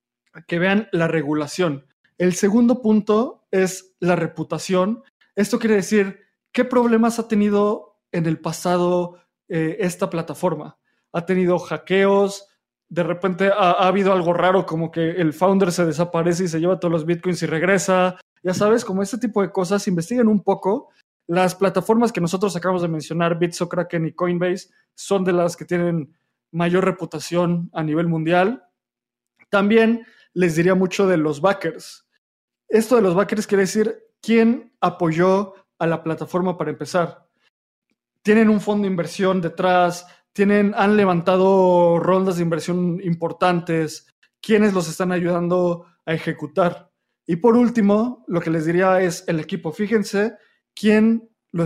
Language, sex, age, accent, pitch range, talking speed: Spanish, male, 20-39, Mexican, 170-200 Hz, 150 wpm